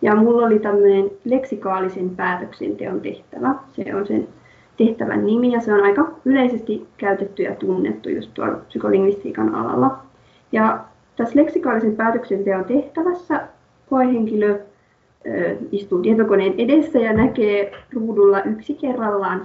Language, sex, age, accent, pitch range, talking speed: Finnish, female, 30-49, native, 200-240 Hz, 115 wpm